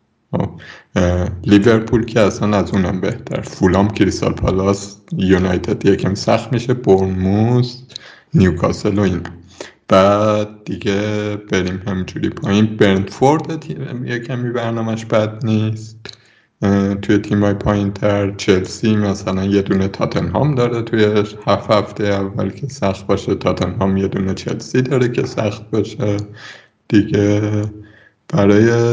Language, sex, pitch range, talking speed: Persian, male, 100-120 Hz, 115 wpm